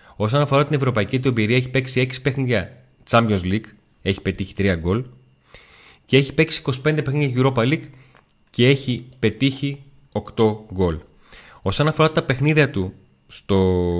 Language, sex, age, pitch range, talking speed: Greek, male, 30-49, 100-135 Hz, 145 wpm